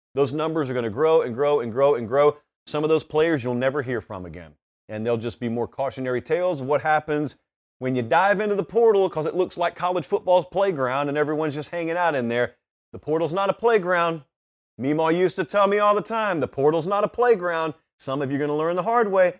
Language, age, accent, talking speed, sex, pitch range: English, 30-49, American, 245 wpm, male, 125-180 Hz